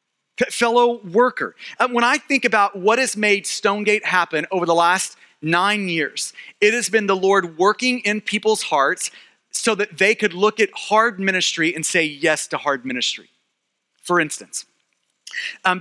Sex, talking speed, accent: male, 160 wpm, American